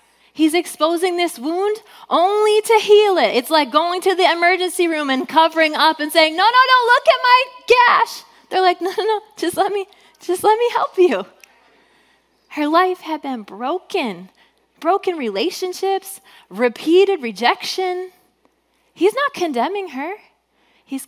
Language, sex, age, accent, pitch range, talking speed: English, female, 20-39, American, 250-370 Hz, 155 wpm